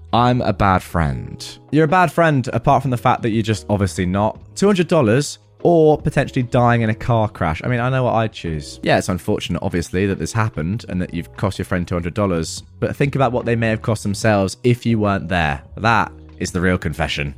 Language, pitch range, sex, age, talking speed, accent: English, 90-125 Hz, male, 20-39, 220 wpm, British